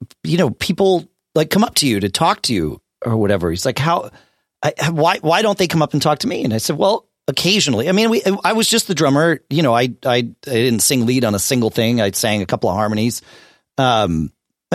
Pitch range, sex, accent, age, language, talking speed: 130-180 Hz, male, American, 40-59, English, 245 wpm